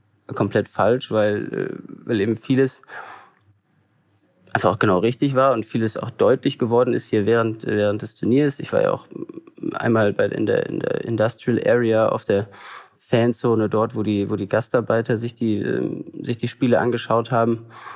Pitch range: 110-130 Hz